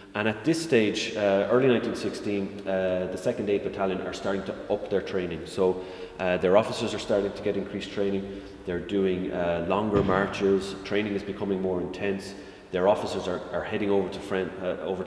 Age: 30-49